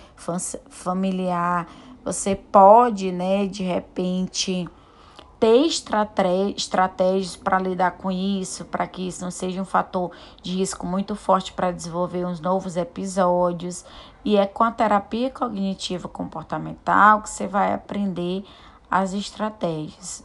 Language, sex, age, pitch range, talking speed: Portuguese, female, 20-39, 180-205 Hz, 120 wpm